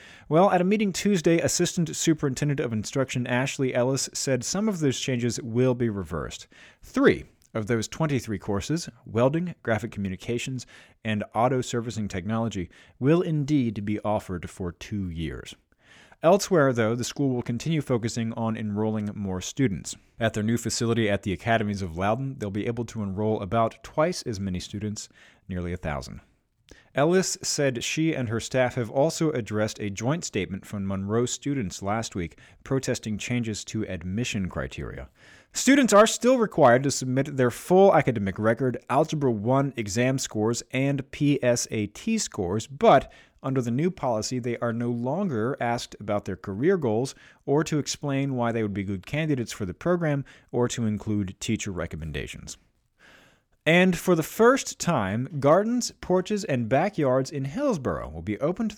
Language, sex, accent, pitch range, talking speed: English, male, American, 105-140 Hz, 160 wpm